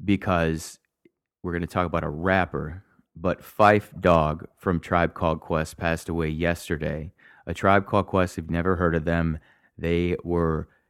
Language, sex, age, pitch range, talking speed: English, male, 30-49, 80-95 Hz, 165 wpm